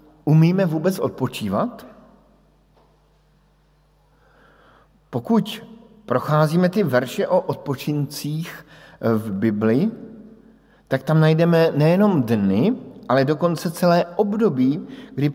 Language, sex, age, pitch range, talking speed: Slovak, male, 50-69, 125-165 Hz, 80 wpm